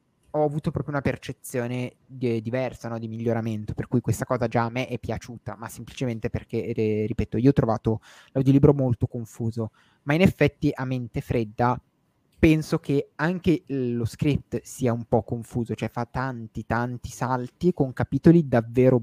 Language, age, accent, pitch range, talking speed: Italian, 20-39, native, 115-150 Hz, 165 wpm